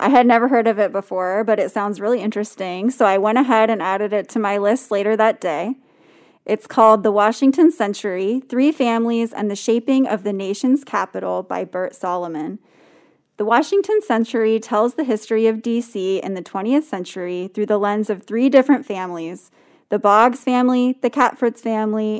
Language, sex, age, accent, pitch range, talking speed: English, female, 20-39, American, 200-250 Hz, 180 wpm